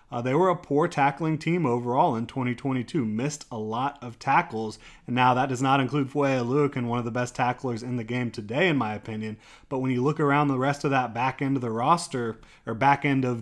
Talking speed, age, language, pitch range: 240 wpm, 30-49, English, 120-140 Hz